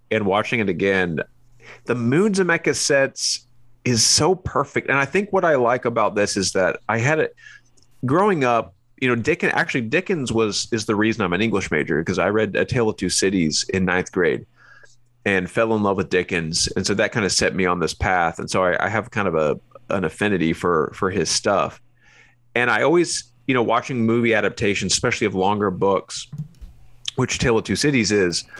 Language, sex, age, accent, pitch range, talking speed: English, male, 30-49, American, 100-135 Hz, 210 wpm